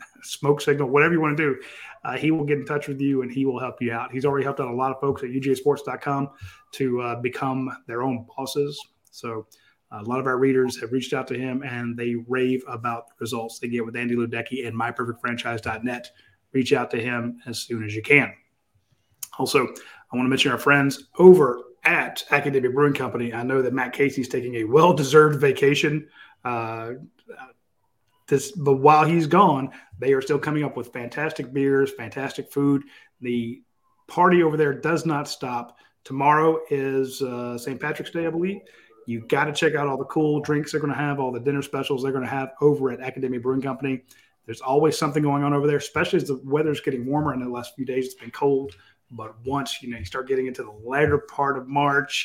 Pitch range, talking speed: 120-145 Hz, 210 wpm